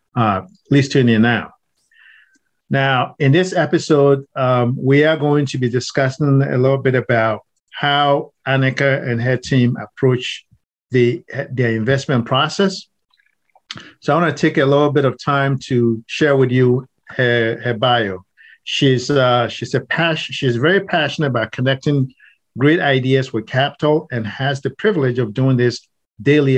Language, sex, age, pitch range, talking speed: English, male, 50-69, 120-145 Hz, 150 wpm